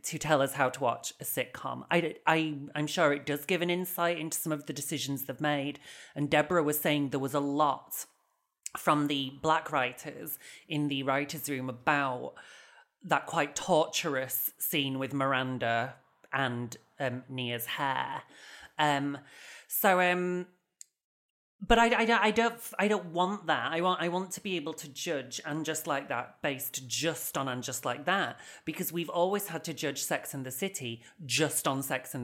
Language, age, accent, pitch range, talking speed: English, 30-49, British, 135-170 Hz, 175 wpm